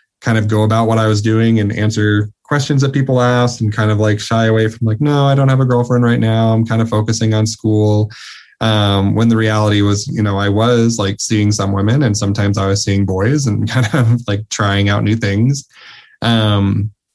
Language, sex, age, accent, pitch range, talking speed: English, male, 20-39, American, 100-115 Hz, 225 wpm